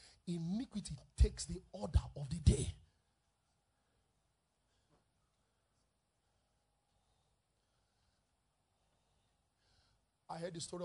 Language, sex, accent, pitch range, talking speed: English, male, Nigerian, 155-205 Hz, 60 wpm